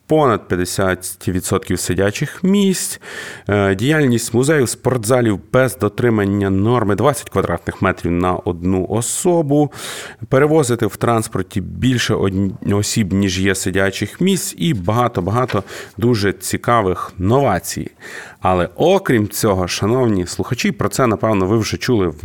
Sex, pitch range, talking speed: male, 95-130 Hz, 115 wpm